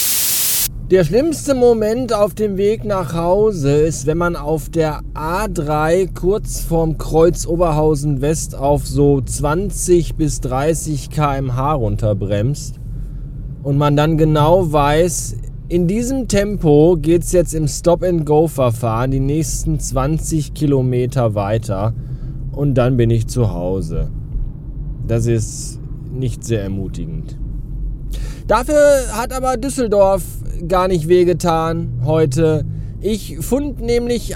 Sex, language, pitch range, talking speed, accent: male, German, 130-185 Hz, 120 wpm, German